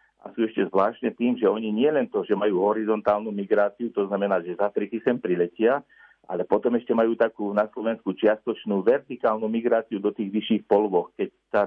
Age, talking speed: 50-69, 185 wpm